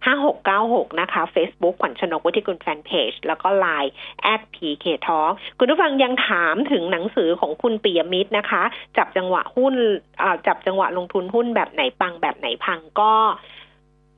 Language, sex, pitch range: Thai, female, 205-275 Hz